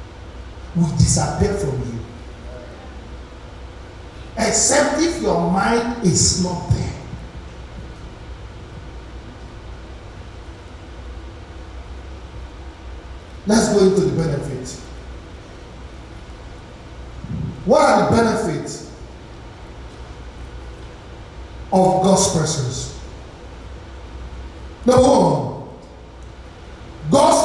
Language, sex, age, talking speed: English, male, 50-69, 60 wpm